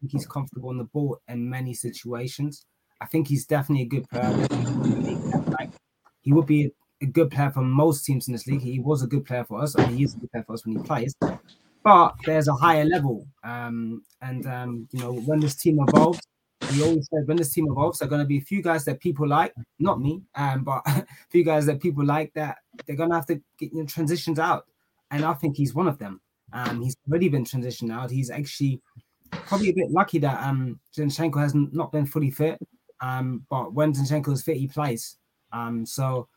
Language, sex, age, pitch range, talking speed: English, male, 20-39, 125-155 Hz, 225 wpm